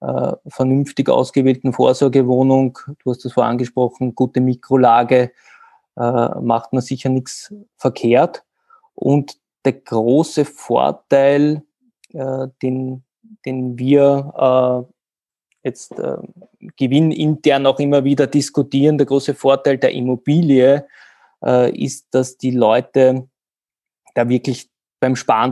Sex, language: male, German